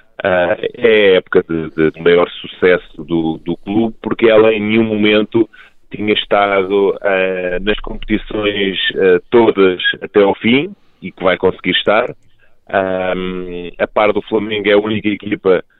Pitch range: 90-110 Hz